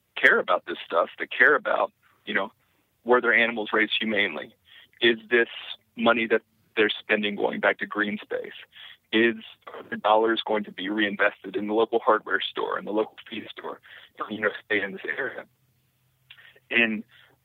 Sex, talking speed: male, 170 wpm